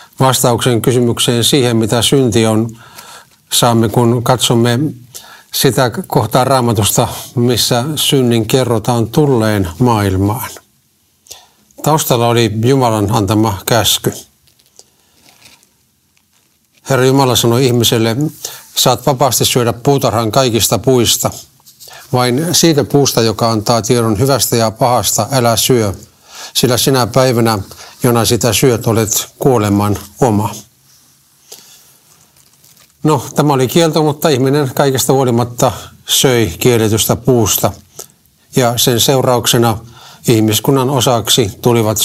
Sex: male